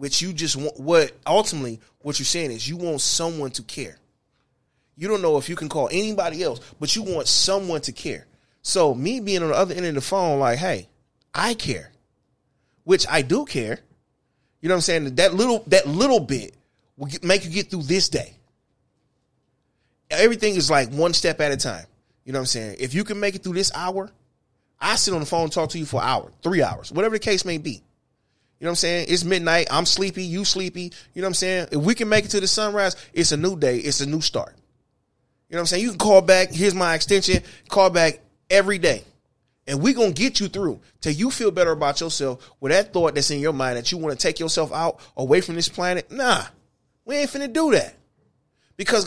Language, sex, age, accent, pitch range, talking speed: English, male, 20-39, American, 140-195 Hz, 230 wpm